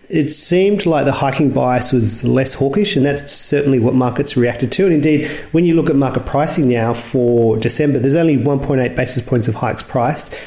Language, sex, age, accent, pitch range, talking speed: English, male, 40-59, Australian, 120-145 Hz, 200 wpm